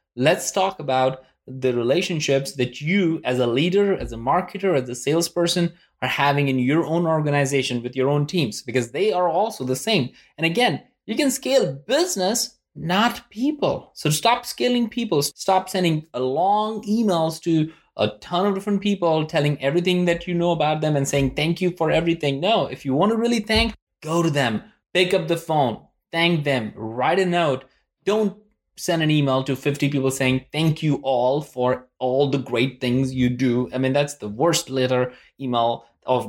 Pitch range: 130-185 Hz